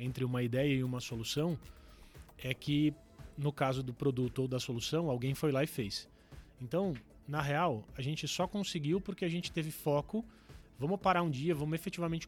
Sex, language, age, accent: male, Portuguese, 30-49, Brazilian